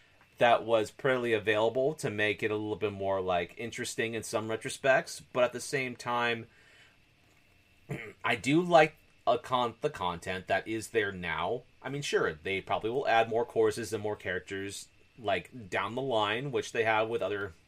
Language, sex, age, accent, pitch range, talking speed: English, male, 30-49, American, 105-130 Hz, 180 wpm